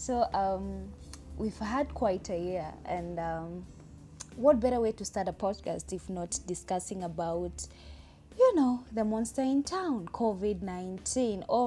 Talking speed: 145 wpm